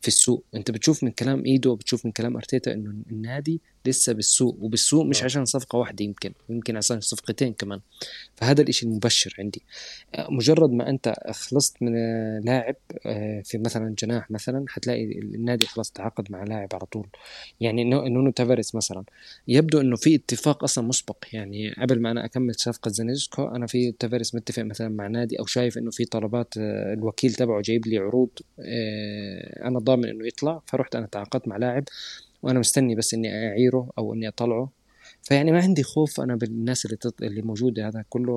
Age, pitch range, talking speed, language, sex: 20-39, 110-130 Hz, 170 wpm, Arabic, male